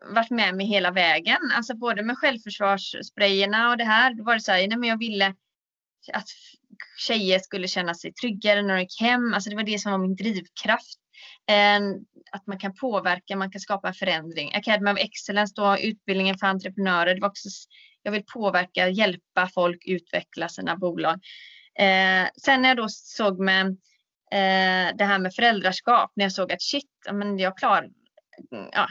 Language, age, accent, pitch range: Swedish, 20-39, native, 190-235 Hz